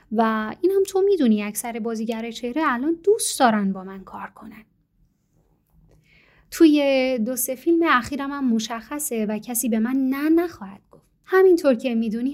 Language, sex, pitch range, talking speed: Persian, female, 215-285 Hz, 150 wpm